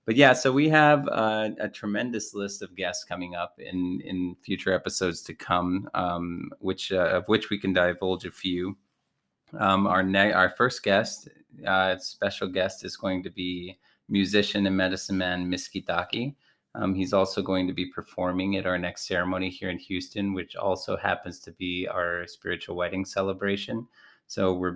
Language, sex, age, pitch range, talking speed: English, male, 30-49, 90-100 Hz, 175 wpm